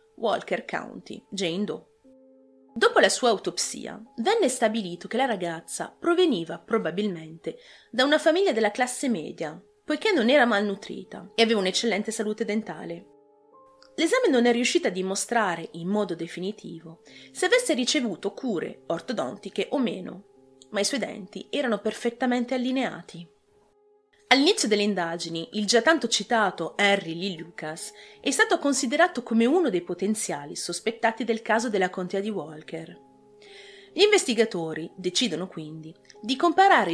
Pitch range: 180-255 Hz